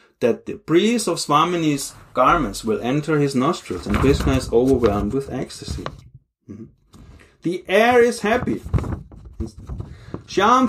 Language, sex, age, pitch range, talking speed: English, male, 30-49, 125-210 Hz, 130 wpm